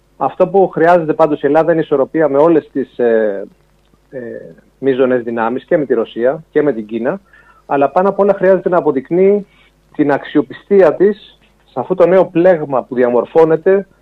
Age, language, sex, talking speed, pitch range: 40-59, Greek, male, 170 wpm, 130-170 Hz